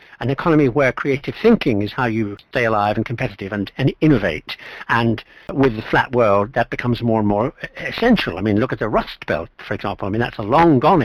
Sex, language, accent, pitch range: male, English, British, 115-160 Hz